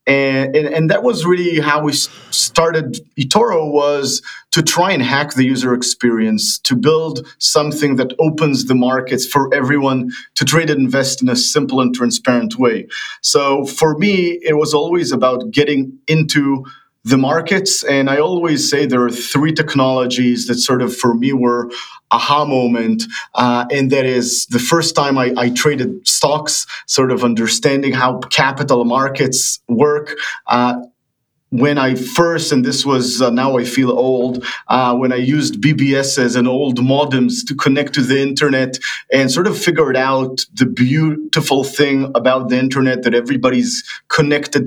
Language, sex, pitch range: English, male, 125-150 Hz